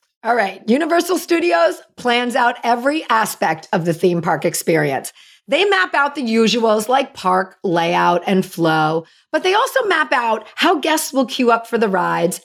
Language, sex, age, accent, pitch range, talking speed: English, female, 40-59, American, 195-295 Hz, 175 wpm